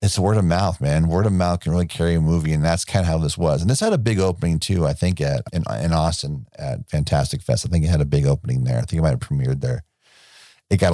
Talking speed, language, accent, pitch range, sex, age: 285 wpm, English, American, 80-115 Hz, male, 40-59